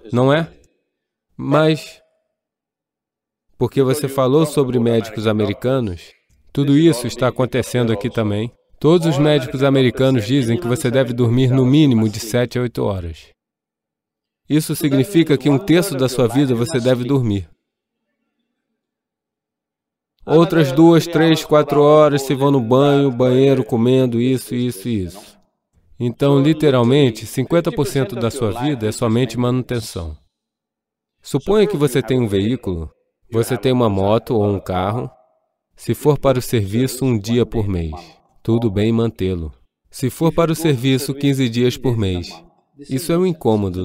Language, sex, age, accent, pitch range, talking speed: English, male, 20-39, Brazilian, 115-145 Hz, 140 wpm